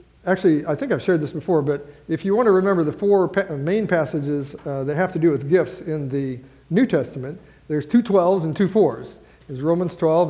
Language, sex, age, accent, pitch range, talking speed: English, male, 50-69, American, 140-175 Hz, 215 wpm